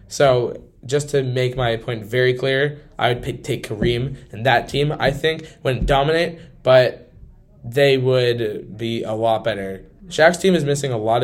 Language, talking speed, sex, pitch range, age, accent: English, 175 wpm, male, 120-145 Hz, 10-29, American